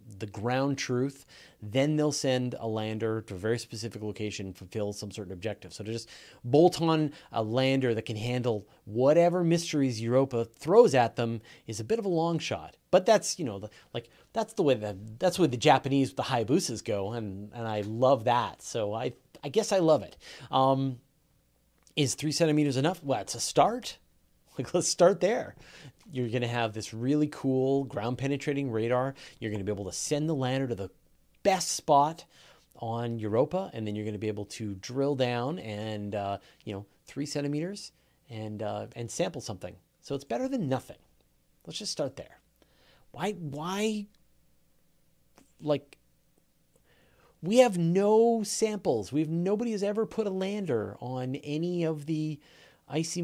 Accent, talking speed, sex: American, 175 wpm, male